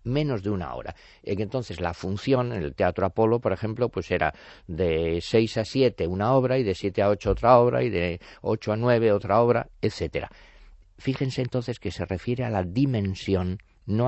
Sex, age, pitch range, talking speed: male, 50-69, 85-115 Hz, 190 wpm